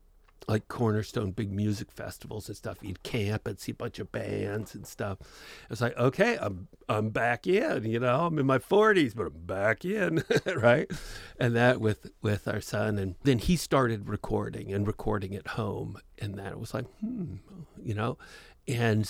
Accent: American